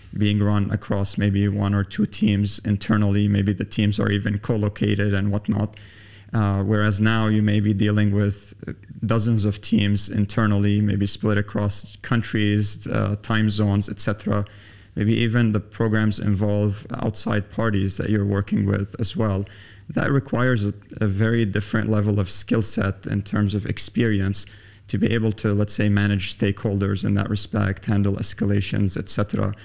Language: Arabic